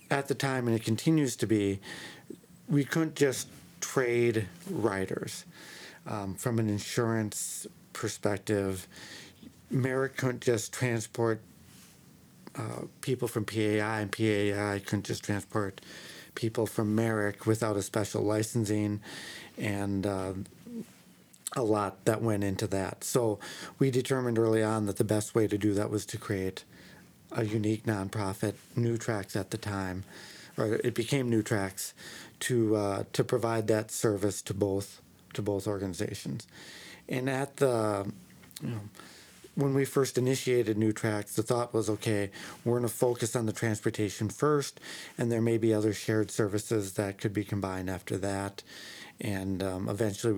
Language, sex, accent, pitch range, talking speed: English, male, American, 100-115 Hz, 150 wpm